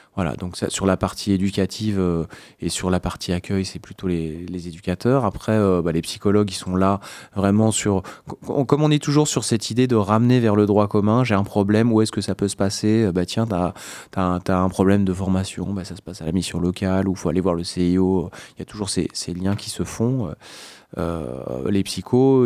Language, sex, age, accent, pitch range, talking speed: French, male, 20-39, French, 90-100 Hz, 235 wpm